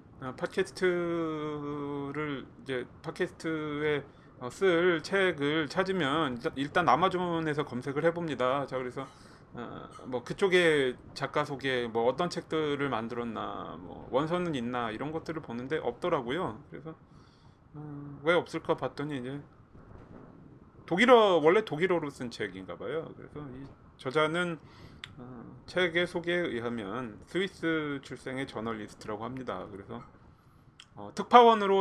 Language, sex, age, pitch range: Korean, male, 30-49, 125-170 Hz